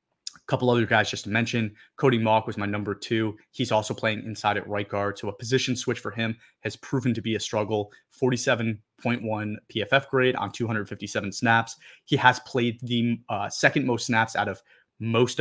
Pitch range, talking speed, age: 105-120 Hz, 185 wpm, 30-49